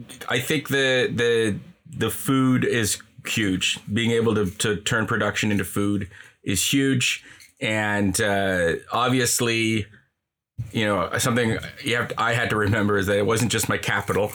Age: 30-49